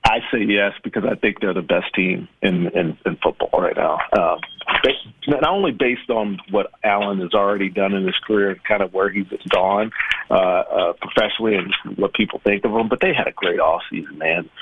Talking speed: 210 wpm